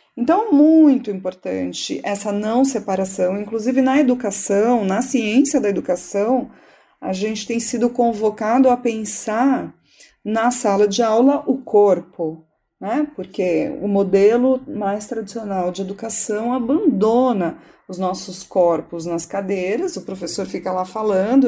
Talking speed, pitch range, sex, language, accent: 125 wpm, 190-250 Hz, female, English, Brazilian